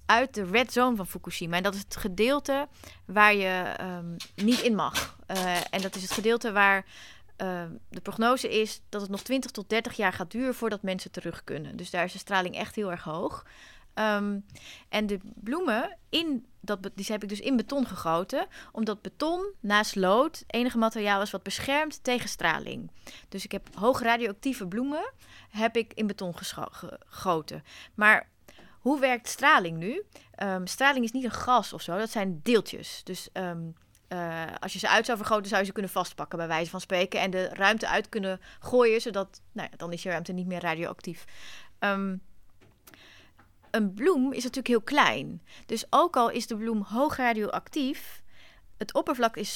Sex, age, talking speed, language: female, 30-49, 170 wpm, Dutch